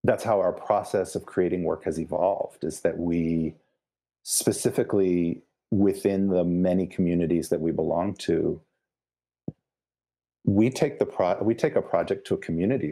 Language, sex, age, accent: English, male, 40-59, American